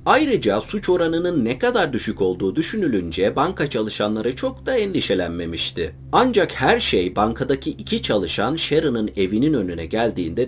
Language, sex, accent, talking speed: Turkish, male, native, 130 wpm